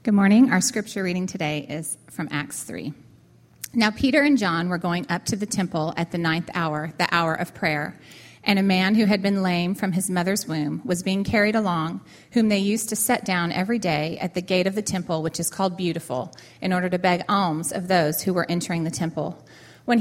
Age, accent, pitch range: 30-49, American, 170-210 Hz